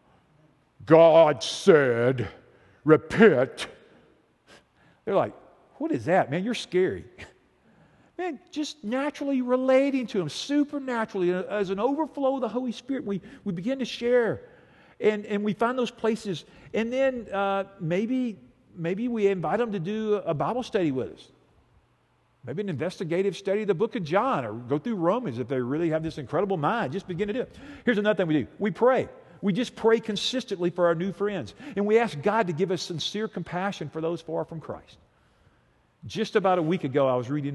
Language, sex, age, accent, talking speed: English, male, 50-69, American, 180 wpm